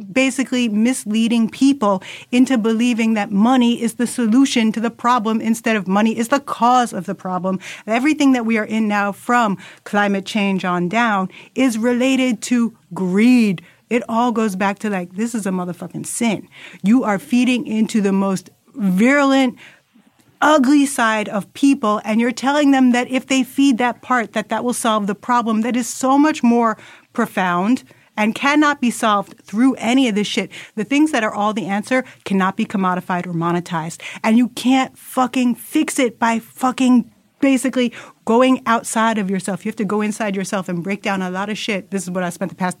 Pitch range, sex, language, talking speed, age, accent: 205-255 Hz, female, English, 190 wpm, 30-49, American